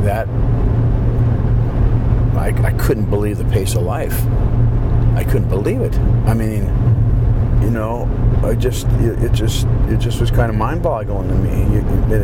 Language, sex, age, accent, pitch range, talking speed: English, male, 50-69, American, 105-115 Hz, 145 wpm